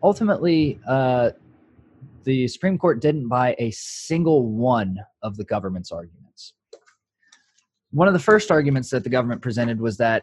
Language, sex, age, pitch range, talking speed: English, male, 20-39, 110-150 Hz, 145 wpm